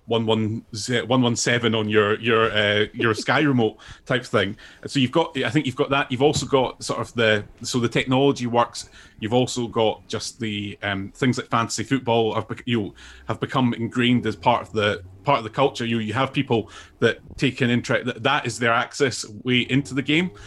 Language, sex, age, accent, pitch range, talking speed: English, male, 30-49, British, 110-130 Hz, 205 wpm